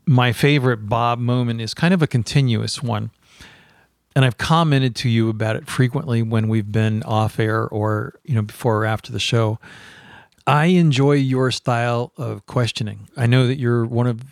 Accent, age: American, 40-59